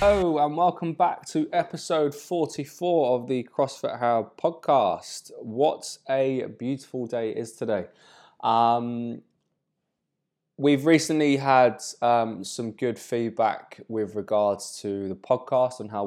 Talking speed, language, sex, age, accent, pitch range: 125 wpm, English, male, 20-39, British, 100-120 Hz